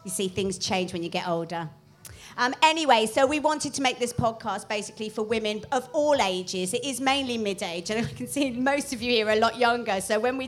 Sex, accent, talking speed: female, British, 240 wpm